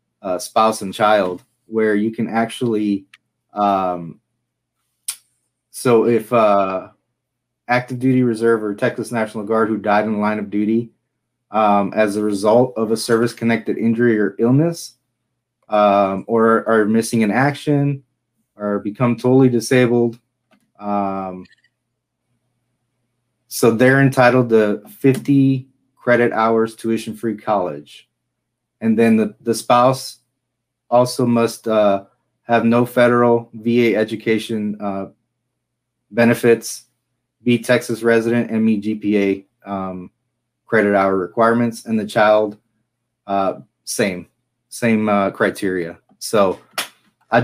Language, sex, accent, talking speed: English, male, American, 120 wpm